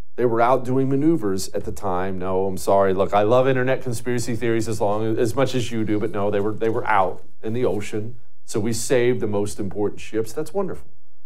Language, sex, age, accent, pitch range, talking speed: English, male, 40-59, American, 90-115 Hz, 230 wpm